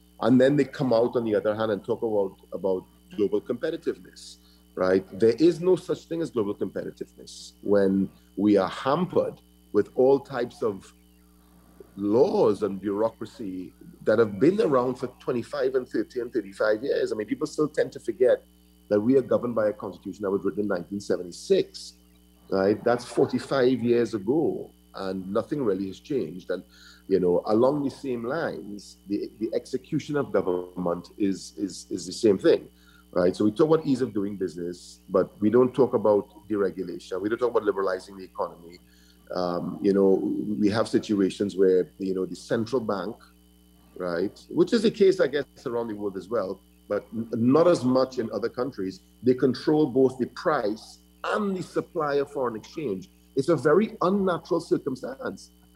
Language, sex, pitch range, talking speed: English, male, 85-135 Hz, 175 wpm